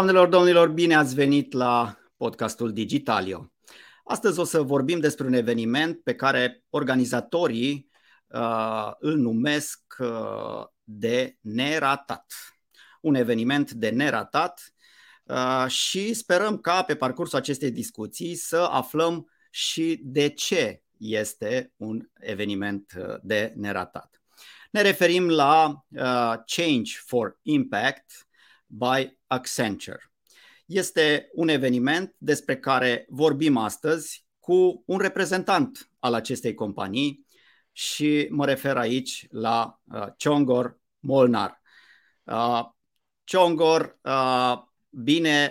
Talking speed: 105 wpm